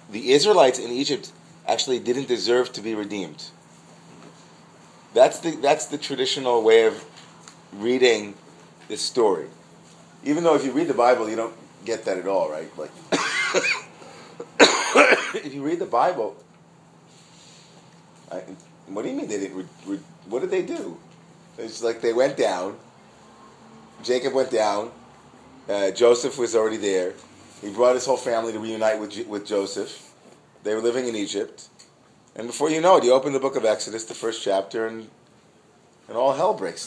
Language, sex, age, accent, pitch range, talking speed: English, male, 30-49, American, 105-135 Hz, 160 wpm